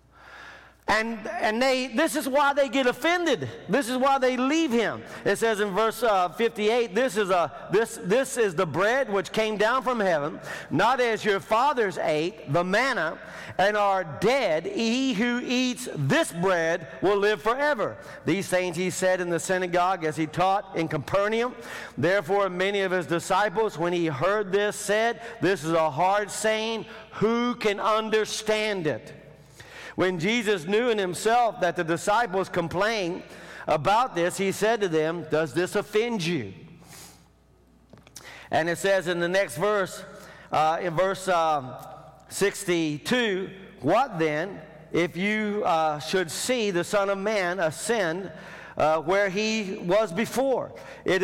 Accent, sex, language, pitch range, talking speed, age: American, male, English, 175-225 Hz, 155 wpm, 50-69